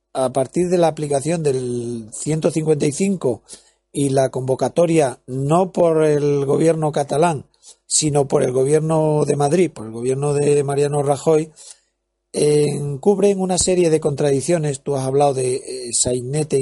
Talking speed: 140 wpm